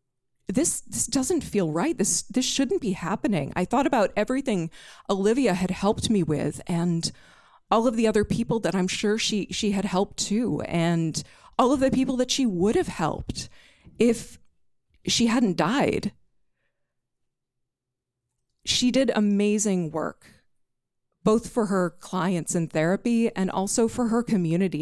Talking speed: 150 wpm